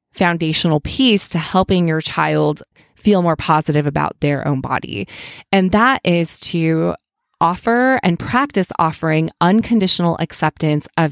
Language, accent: English, American